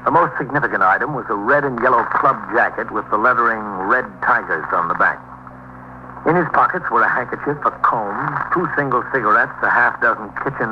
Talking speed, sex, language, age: 190 wpm, male, English, 60-79